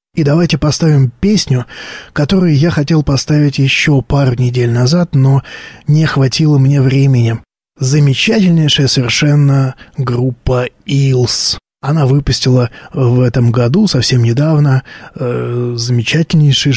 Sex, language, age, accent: male, Russian, 20-39, native